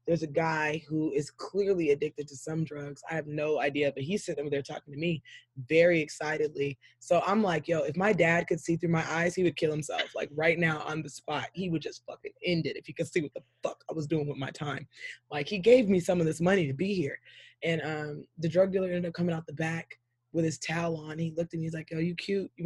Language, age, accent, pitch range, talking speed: English, 20-39, American, 145-175 Hz, 265 wpm